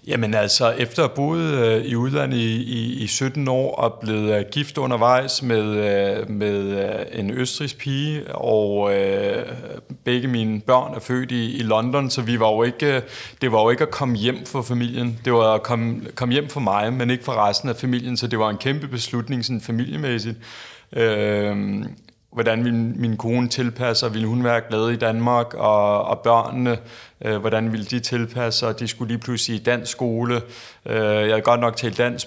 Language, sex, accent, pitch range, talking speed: Danish, male, native, 115-130 Hz, 190 wpm